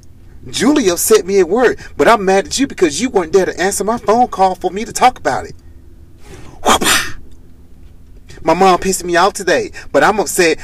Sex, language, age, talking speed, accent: male, English, 30-49, 190 wpm, American